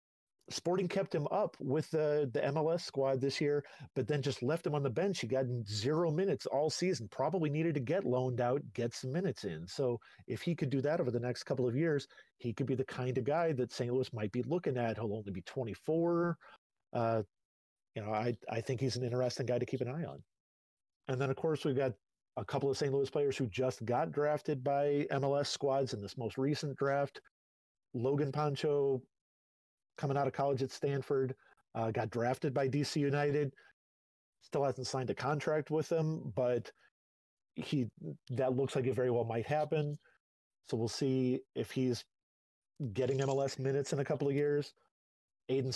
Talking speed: 195 wpm